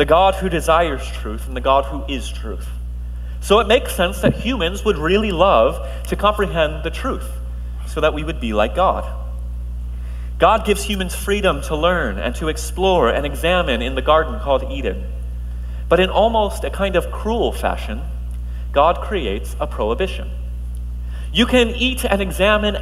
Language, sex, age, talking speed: English, male, 30-49, 170 wpm